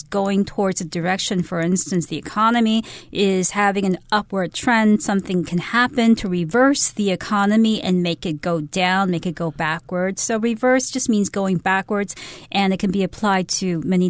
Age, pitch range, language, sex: 40-59, 185-225 Hz, Chinese, female